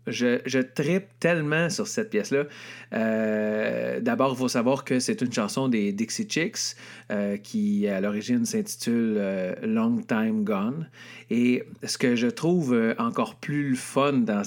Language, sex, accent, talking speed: French, male, Canadian, 160 wpm